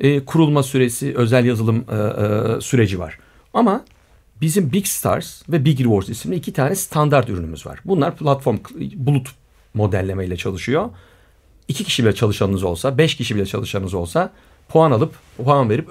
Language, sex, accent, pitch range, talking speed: Turkish, male, native, 100-155 Hz, 145 wpm